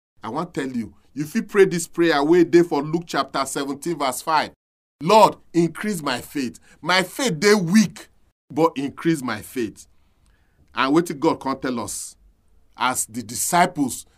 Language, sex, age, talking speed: English, male, 40-59, 170 wpm